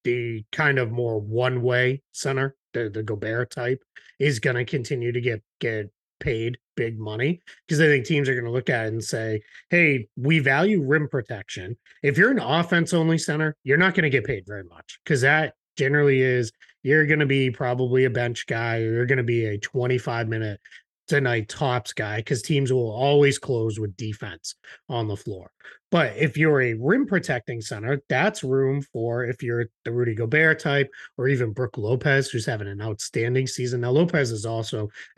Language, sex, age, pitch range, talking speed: English, male, 30-49, 115-140 Hz, 190 wpm